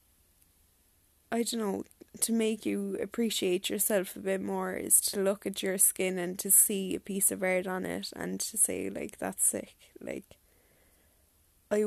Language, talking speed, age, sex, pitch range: English, 170 wpm, 10-29, female, 185-215 Hz